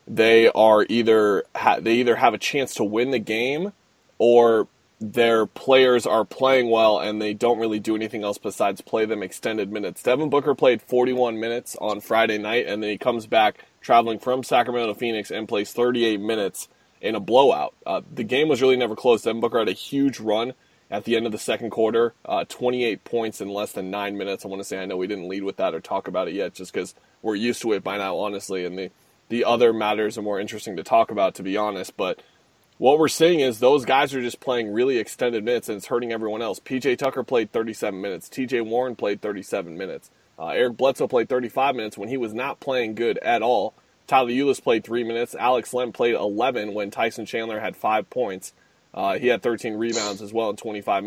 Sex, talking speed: male, 220 wpm